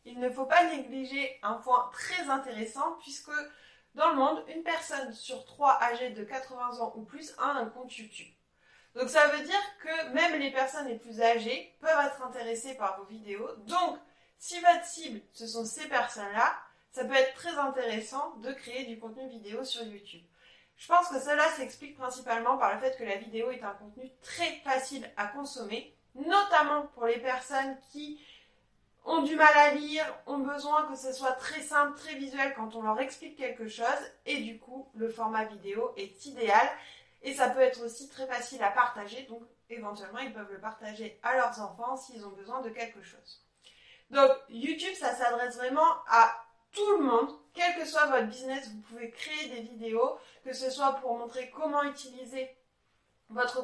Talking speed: 185 wpm